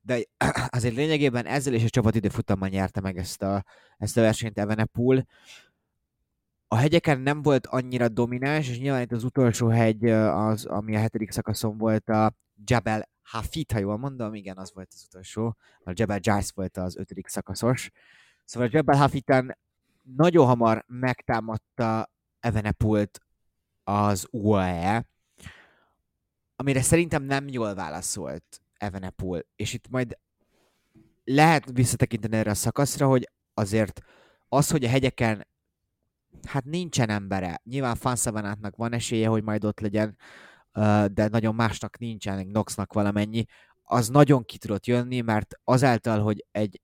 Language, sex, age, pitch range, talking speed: Hungarian, male, 20-39, 105-125 Hz, 135 wpm